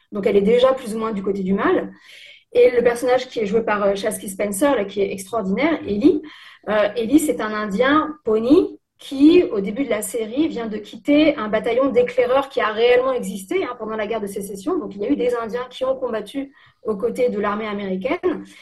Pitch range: 210-265 Hz